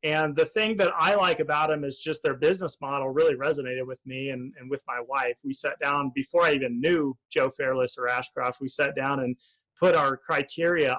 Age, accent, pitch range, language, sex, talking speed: 30-49, American, 130-155 Hz, English, male, 220 wpm